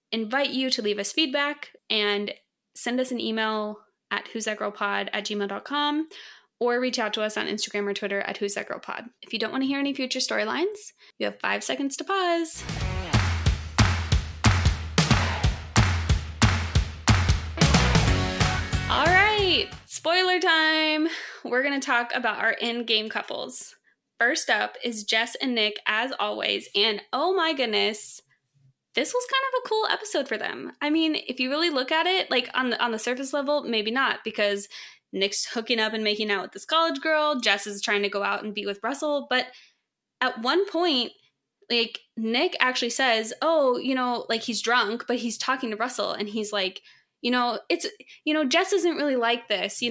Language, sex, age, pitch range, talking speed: English, female, 20-39, 205-290 Hz, 175 wpm